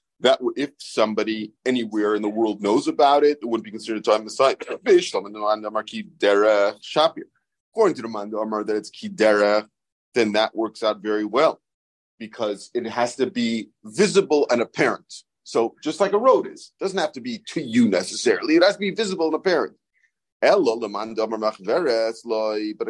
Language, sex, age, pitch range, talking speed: English, male, 30-49, 110-160 Hz, 160 wpm